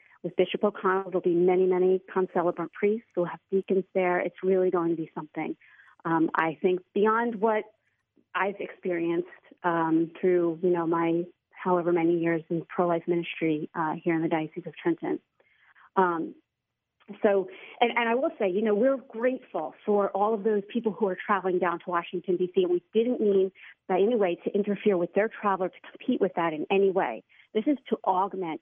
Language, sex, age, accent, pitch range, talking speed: English, female, 40-59, American, 175-220 Hz, 190 wpm